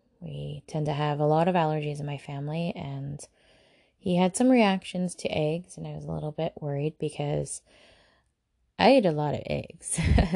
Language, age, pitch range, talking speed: English, 20-39, 145-185 Hz, 185 wpm